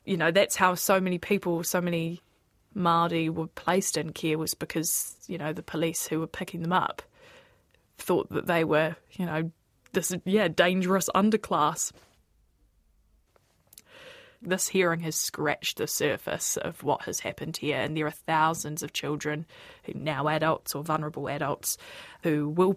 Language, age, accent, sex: English, 20-39, Australian, female